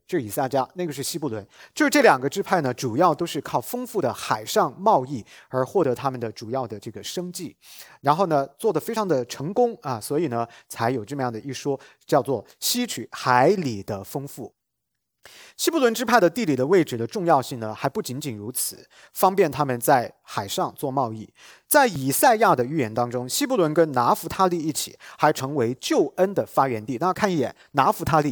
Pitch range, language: 125-180 Hz, English